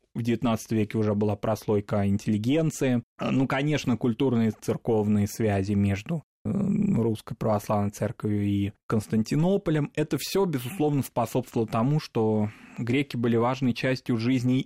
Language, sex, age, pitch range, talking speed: Russian, male, 20-39, 105-130 Hz, 125 wpm